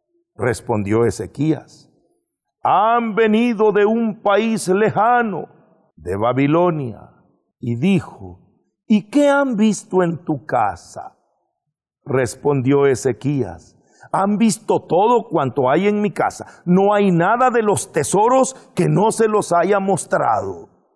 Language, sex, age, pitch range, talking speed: English, male, 50-69, 170-245 Hz, 115 wpm